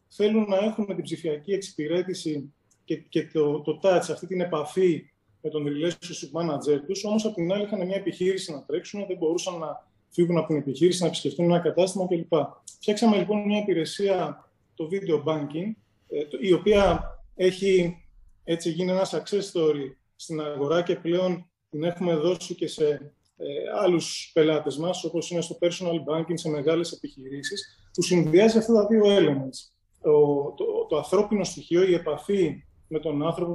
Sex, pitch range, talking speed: male, 155-195 Hz, 165 wpm